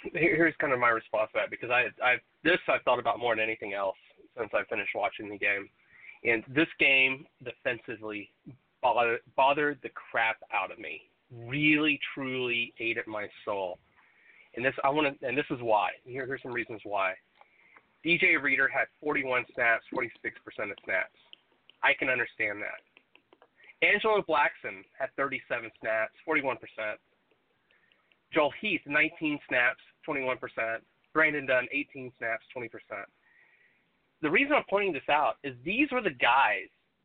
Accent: American